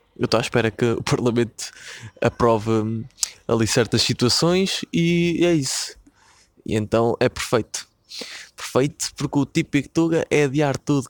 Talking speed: 140 wpm